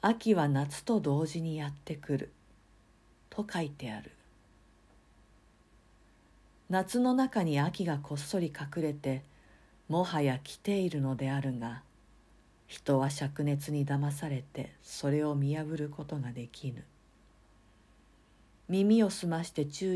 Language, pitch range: Japanese, 125-160 Hz